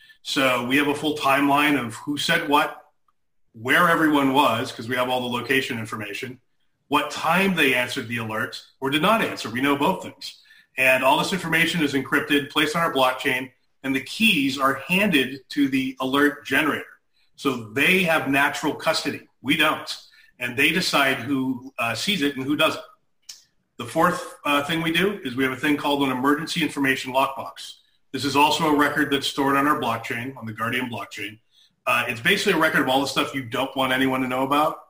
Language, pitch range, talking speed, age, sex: English, 130-150 Hz, 200 wpm, 40-59, male